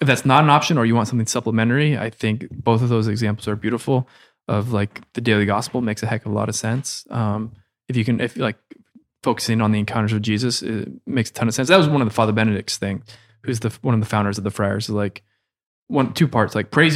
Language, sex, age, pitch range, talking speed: English, male, 20-39, 110-125 Hz, 260 wpm